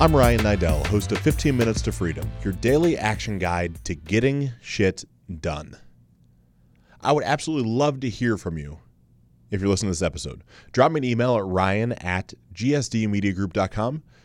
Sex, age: male, 30-49